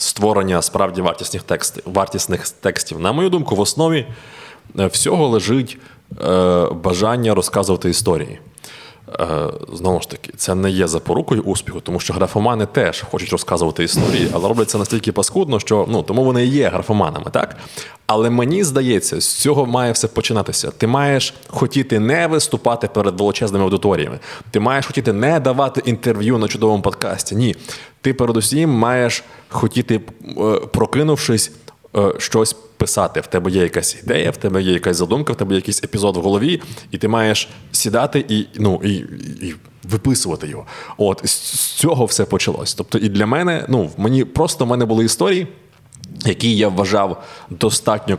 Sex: male